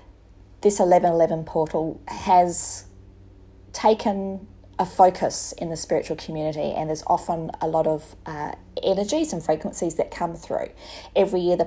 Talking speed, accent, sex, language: 140 wpm, Australian, female, English